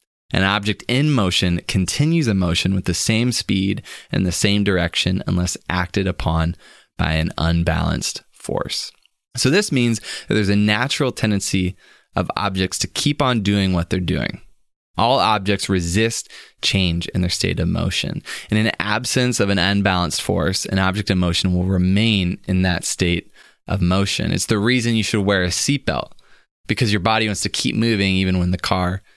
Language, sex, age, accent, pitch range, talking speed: English, male, 20-39, American, 90-105 Hz, 175 wpm